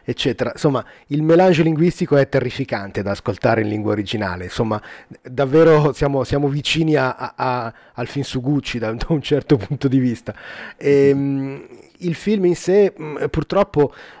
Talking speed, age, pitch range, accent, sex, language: 155 wpm, 30-49, 135-165 Hz, native, male, Italian